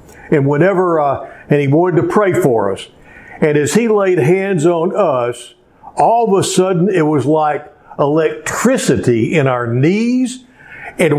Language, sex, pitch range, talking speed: English, male, 130-185 Hz, 155 wpm